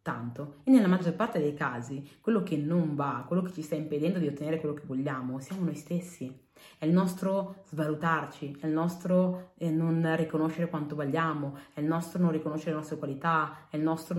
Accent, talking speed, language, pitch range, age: native, 195 wpm, Italian, 150-175 Hz, 30-49